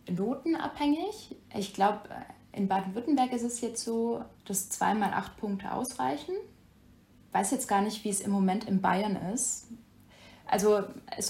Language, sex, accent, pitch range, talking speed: English, female, German, 190-245 Hz, 150 wpm